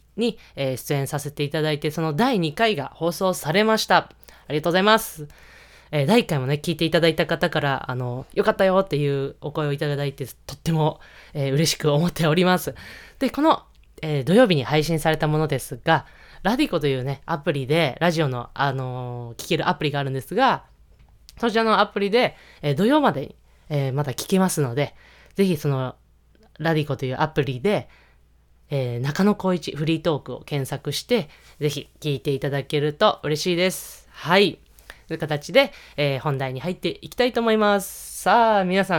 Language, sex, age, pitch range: Japanese, female, 20-39, 140-190 Hz